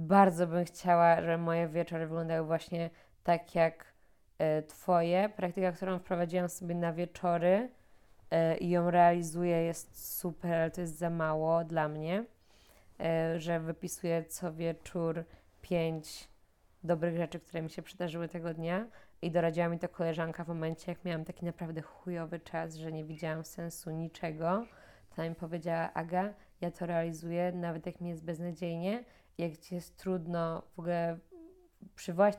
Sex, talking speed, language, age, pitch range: female, 150 wpm, English, 20-39, 165-180 Hz